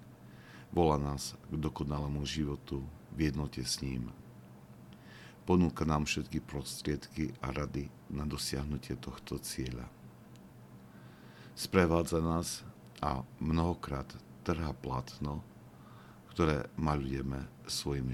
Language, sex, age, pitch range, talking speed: Slovak, male, 50-69, 65-75 Hz, 95 wpm